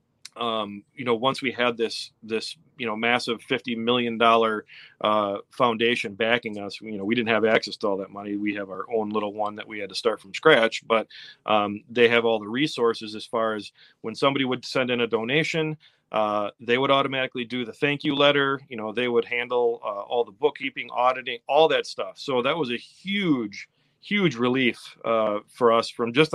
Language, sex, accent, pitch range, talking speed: English, male, American, 110-125 Hz, 205 wpm